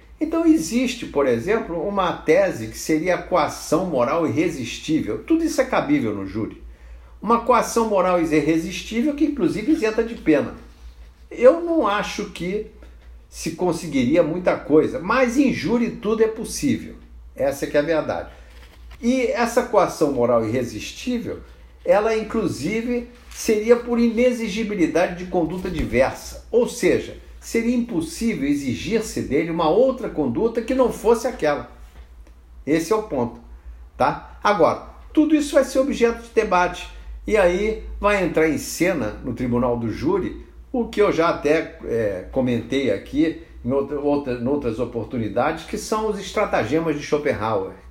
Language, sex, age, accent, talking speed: Portuguese, male, 50-69, Brazilian, 140 wpm